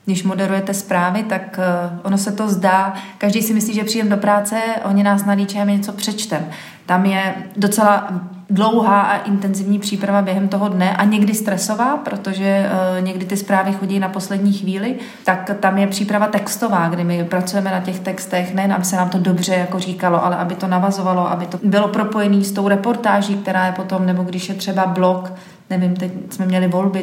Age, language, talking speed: 30-49, Czech, 185 wpm